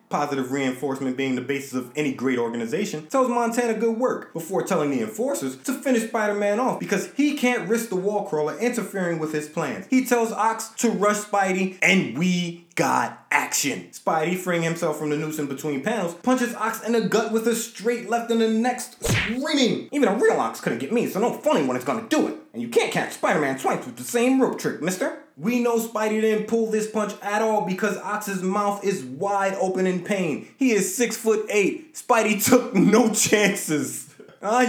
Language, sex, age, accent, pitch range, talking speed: English, male, 20-39, American, 160-230 Hz, 205 wpm